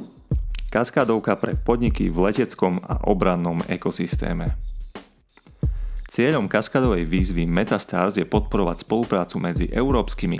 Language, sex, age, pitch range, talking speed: Slovak, male, 30-49, 85-105 Hz, 100 wpm